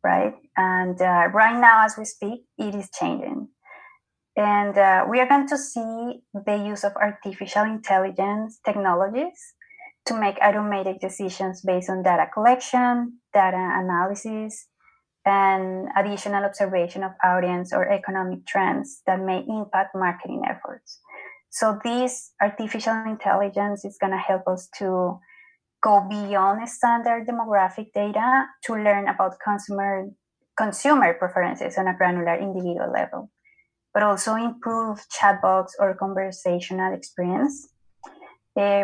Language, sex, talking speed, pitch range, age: English, female, 125 wpm, 190-225 Hz, 20-39